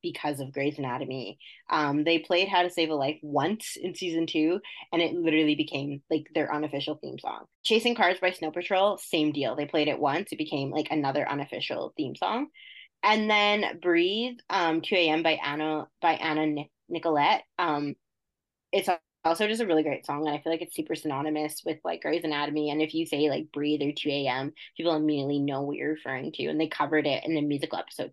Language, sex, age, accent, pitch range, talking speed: English, female, 20-39, American, 150-175 Hz, 205 wpm